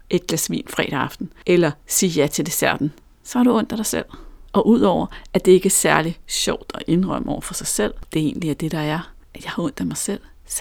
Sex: female